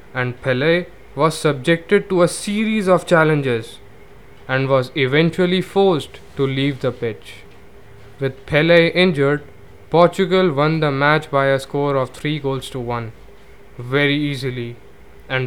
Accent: Indian